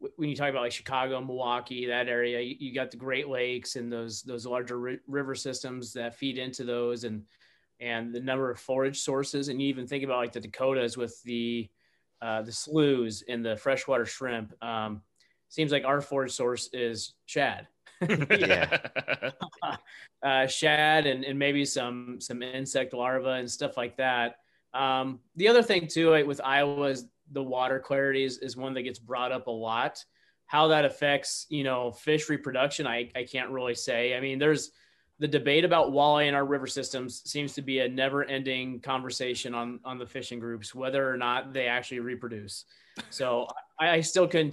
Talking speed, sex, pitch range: 185 wpm, male, 125-140 Hz